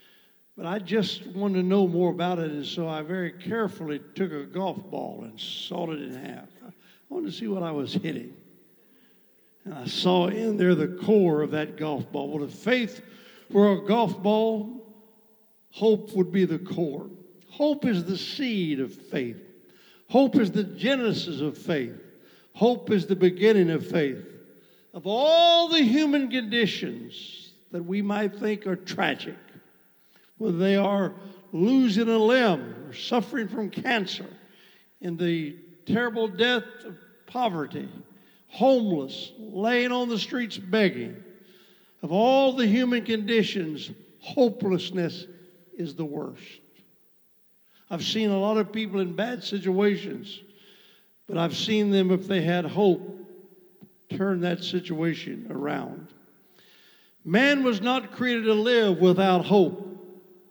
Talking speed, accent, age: 140 wpm, American, 60-79